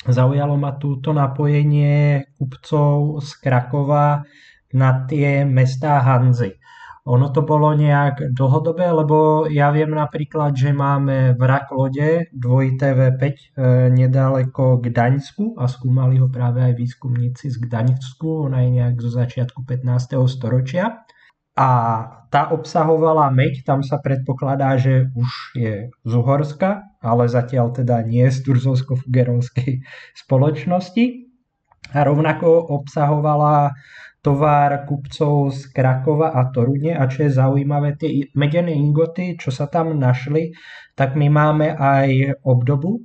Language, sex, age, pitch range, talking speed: Slovak, male, 20-39, 130-150 Hz, 120 wpm